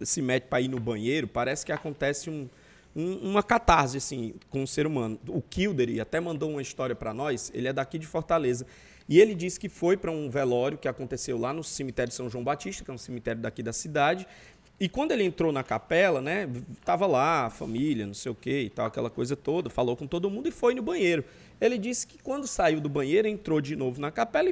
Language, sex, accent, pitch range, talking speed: Portuguese, male, Brazilian, 135-200 Hz, 235 wpm